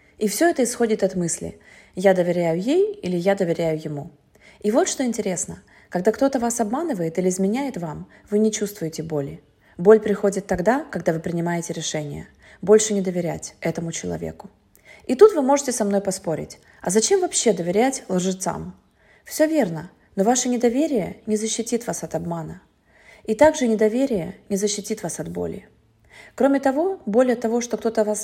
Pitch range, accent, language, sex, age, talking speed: 170-230 Hz, native, Russian, female, 20-39, 165 wpm